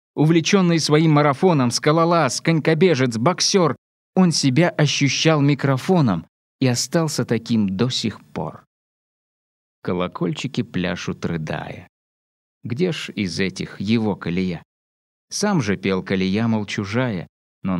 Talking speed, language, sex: 110 wpm, Russian, male